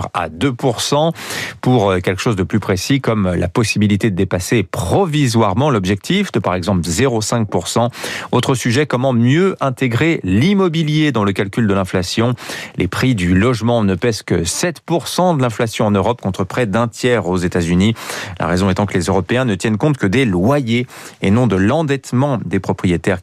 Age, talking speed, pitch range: 40-59, 175 wpm, 95-135 Hz